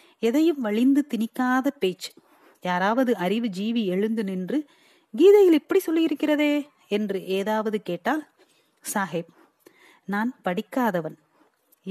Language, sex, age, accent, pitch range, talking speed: Tamil, female, 30-49, native, 190-270 Hz, 90 wpm